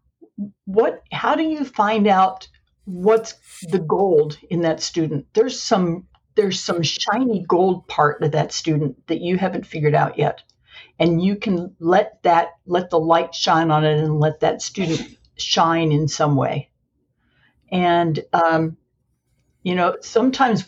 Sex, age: female, 60-79